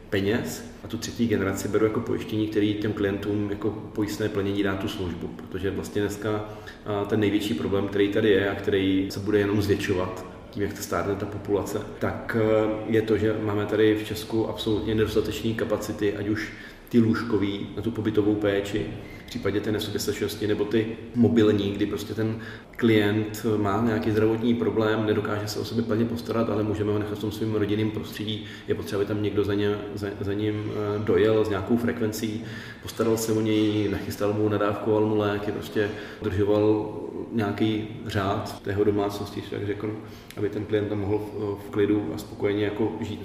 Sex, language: male, Czech